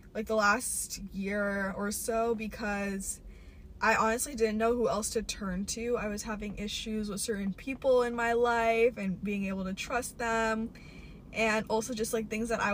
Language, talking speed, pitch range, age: English, 185 wpm, 195-235 Hz, 10-29